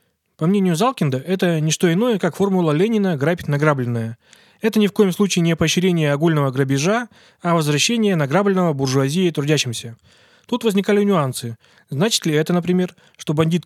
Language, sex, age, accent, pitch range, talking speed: Russian, male, 20-39, native, 145-190 Hz, 155 wpm